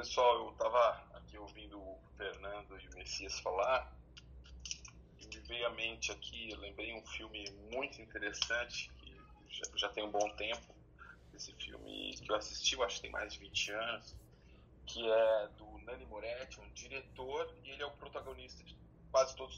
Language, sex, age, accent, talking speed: Portuguese, male, 20-39, Brazilian, 180 wpm